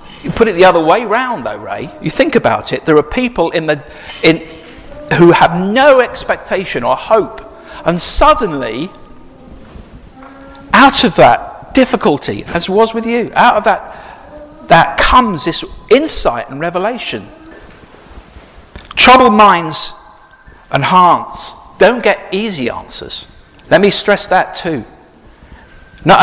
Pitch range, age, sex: 160-230 Hz, 50-69, male